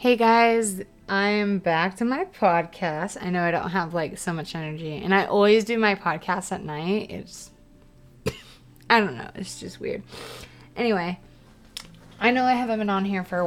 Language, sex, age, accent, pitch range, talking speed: English, female, 20-39, American, 175-220 Hz, 185 wpm